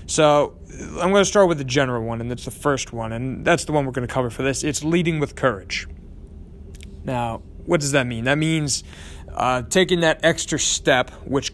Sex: male